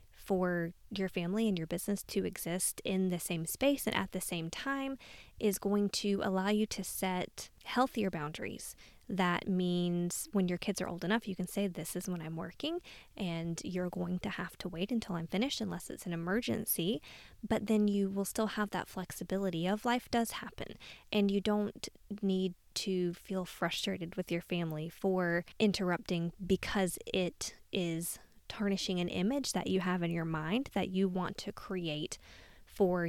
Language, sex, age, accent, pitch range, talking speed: English, female, 20-39, American, 180-205 Hz, 180 wpm